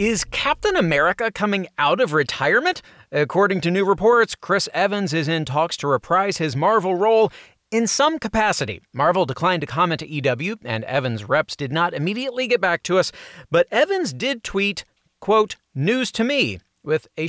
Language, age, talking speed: English, 30-49, 175 wpm